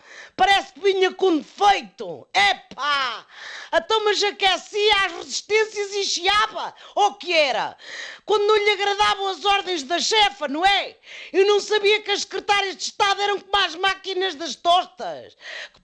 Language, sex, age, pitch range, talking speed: Portuguese, female, 40-59, 350-405 Hz, 160 wpm